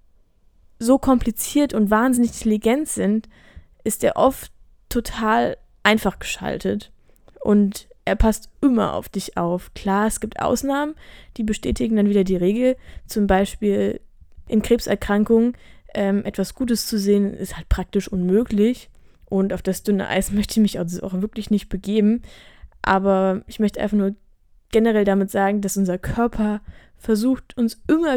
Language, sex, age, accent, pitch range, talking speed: German, female, 20-39, German, 195-235 Hz, 145 wpm